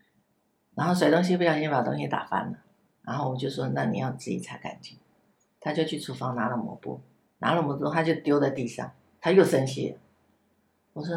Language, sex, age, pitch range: Chinese, female, 50-69, 135-210 Hz